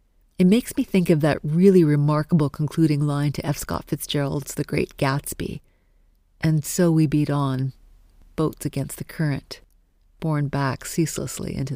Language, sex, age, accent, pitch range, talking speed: English, female, 40-59, American, 135-165 Hz, 155 wpm